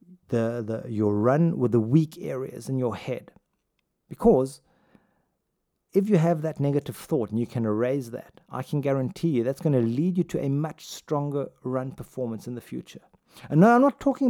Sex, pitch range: male, 125-180 Hz